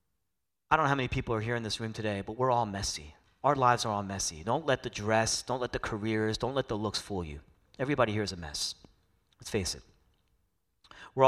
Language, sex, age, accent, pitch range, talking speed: English, male, 40-59, American, 95-120 Hz, 235 wpm